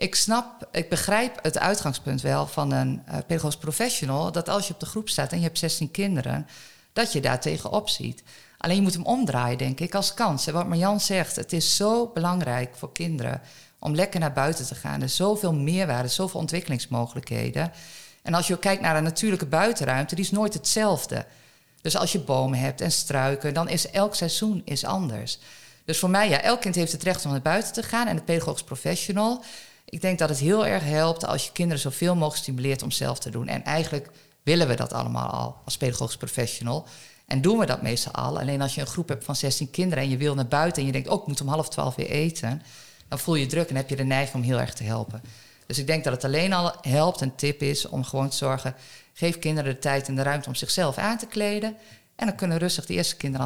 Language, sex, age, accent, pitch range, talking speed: Dutch, female, 50-69, Dutch, 135-180 Hz, 235 wpm